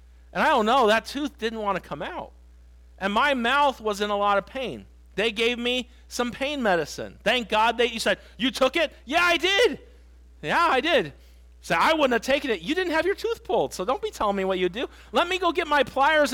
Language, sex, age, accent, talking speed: English, male, 40-59, American, 240 wpm